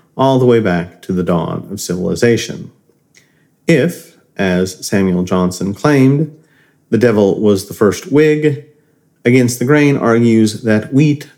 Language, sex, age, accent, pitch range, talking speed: English, male, 40-59, American, 105-145 Hz, 135 wpm